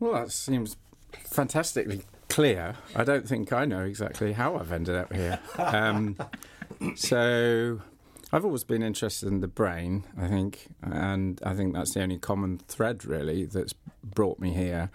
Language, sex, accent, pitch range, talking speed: English, male, British, 95-115 Hz, 160 wpm